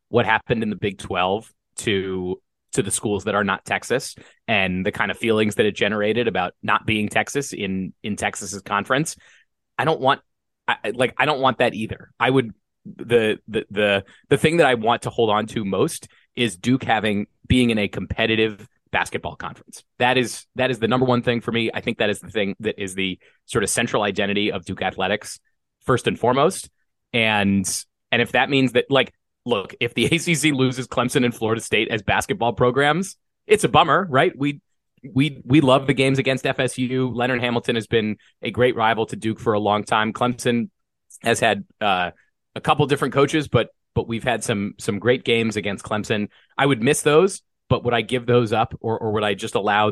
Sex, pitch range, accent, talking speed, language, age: male, 105-130 Hz, American, 205 wpm, English, 30-49